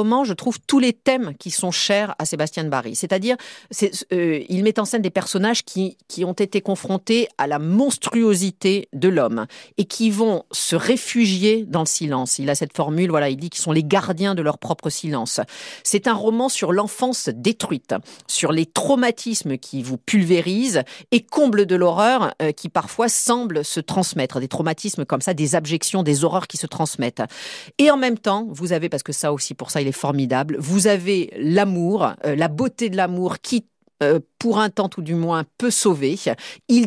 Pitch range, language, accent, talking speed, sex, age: 150-205 Hz, French, French, 195 wpm, female, 40-59